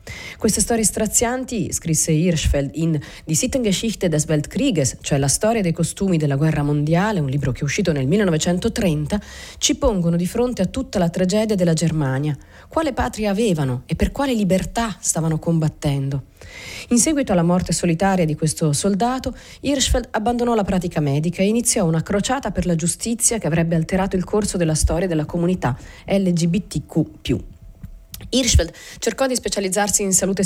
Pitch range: 160-215 Hz